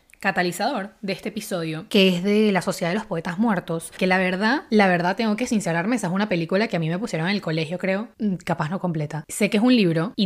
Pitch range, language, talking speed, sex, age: 180-230 Hz, Spanish, 250 wpm, female, 10-29